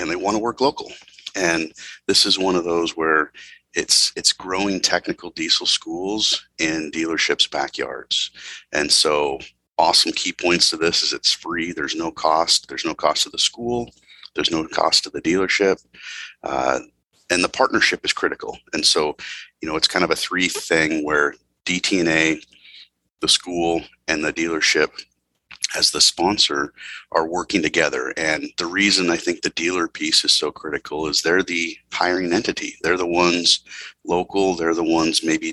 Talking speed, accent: 170 wpm, American